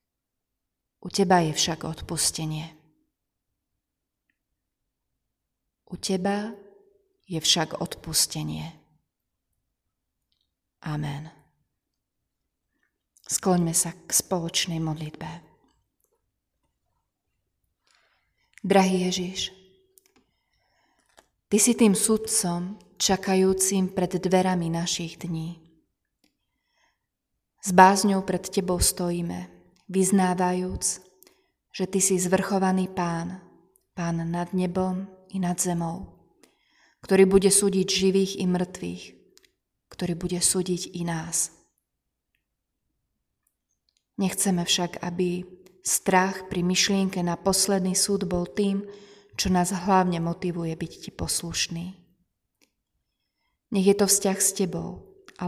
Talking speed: 85 wpm